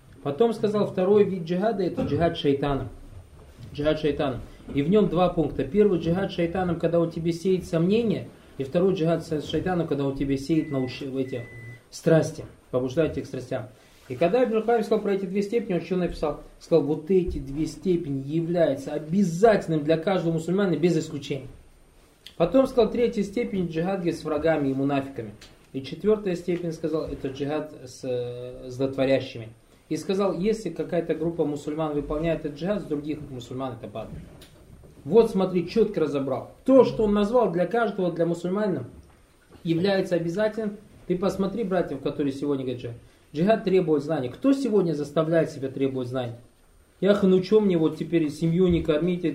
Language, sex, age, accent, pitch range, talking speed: Russian, male, 20-39, native, 140-185 Hz, 155 wpm